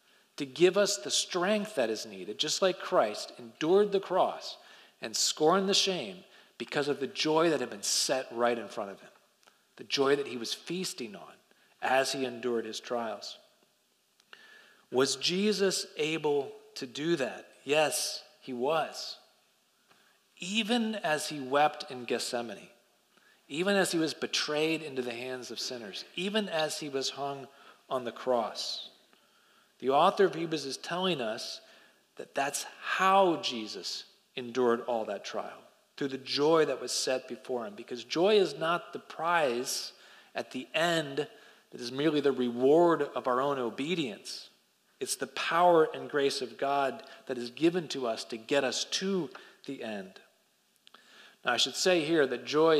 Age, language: 40-59, English